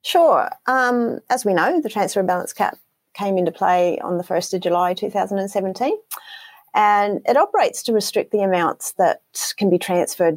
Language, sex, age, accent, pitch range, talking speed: English, female, 30-49, Australian, 165-215 Hz, 170 wpm